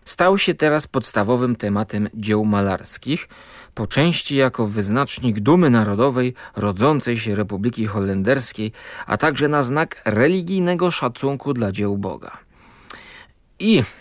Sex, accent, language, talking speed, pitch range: male, native, Polish, 115 wpm, 110-165 Hz